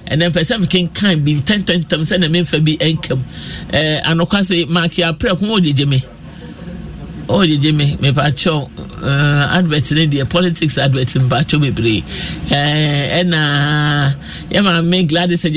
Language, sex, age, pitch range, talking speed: English, male, 50-69, 145-180 Hz, 170 wpm